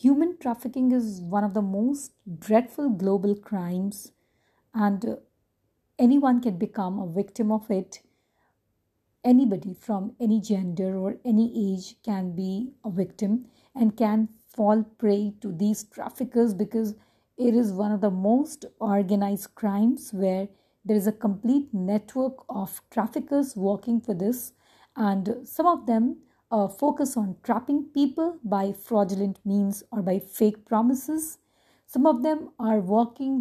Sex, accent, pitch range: female, Indian, 205-260 Hz